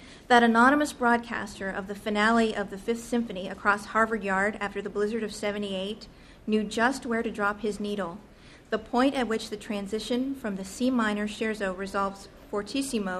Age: 40-59